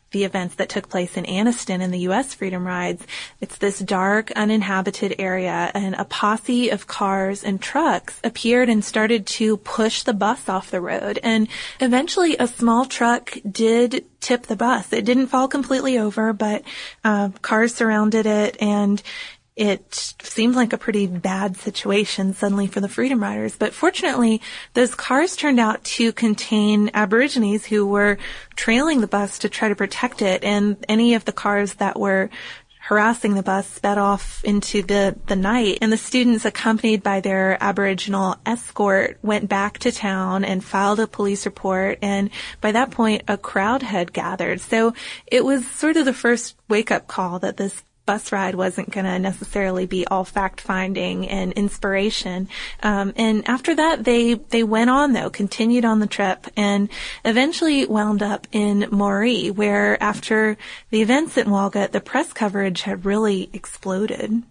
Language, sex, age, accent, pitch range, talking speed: English, female, 20-39, American, 200-235 Hz, 165 wpm